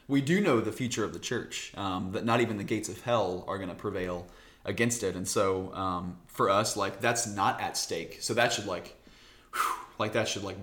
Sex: male